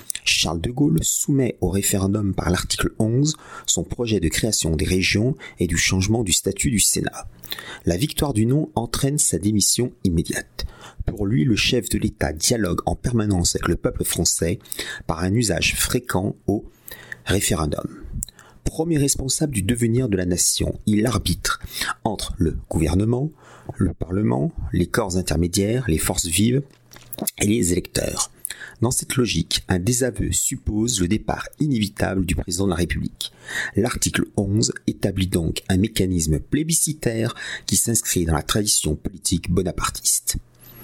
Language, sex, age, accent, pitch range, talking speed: French, male, 40-59, French, 90-120 Hz, 145 wpm